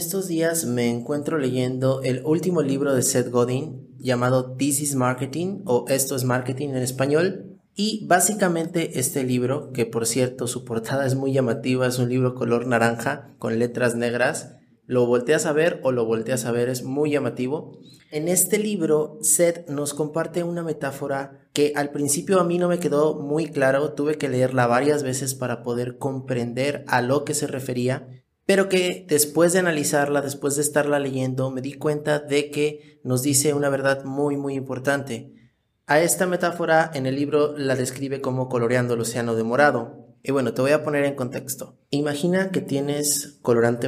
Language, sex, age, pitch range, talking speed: Spanish, male, 30-49, 125-150 Hz, 180 wpm